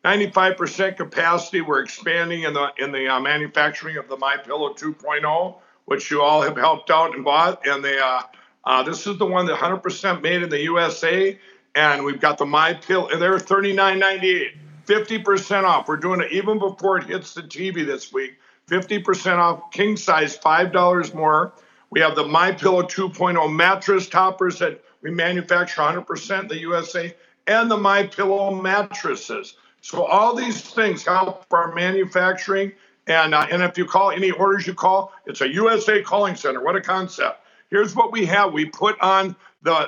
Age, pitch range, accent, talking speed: 60-79, 170-205 Hz, American, 170 wpm